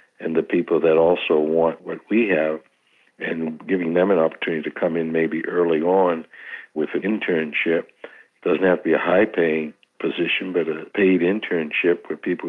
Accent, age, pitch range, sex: American, 60-79, 80-90 Hz, male